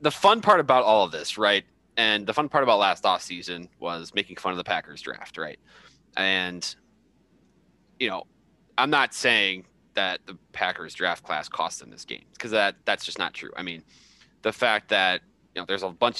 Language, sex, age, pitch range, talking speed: English, male, 20-39, 85-105 Hz, 205 wpm